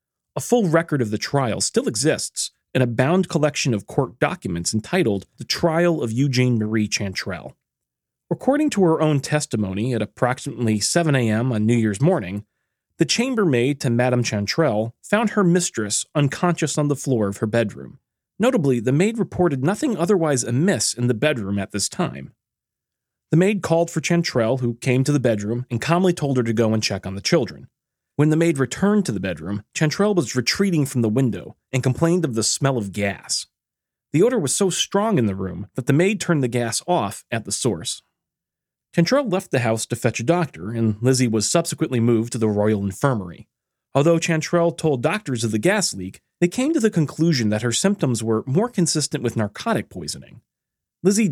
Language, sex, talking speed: English, male, 190 wpm